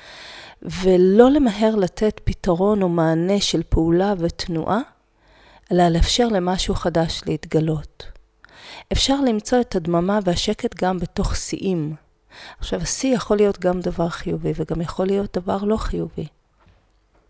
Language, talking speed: Hebrew, 120 wpm